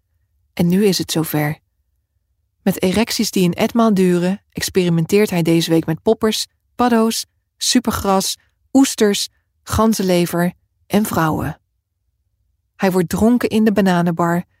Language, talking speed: Dutch, 120 wpm